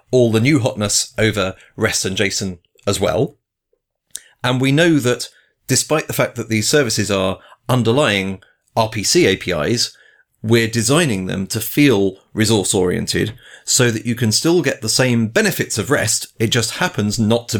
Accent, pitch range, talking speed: British, 100-125 Hz, 160 wpm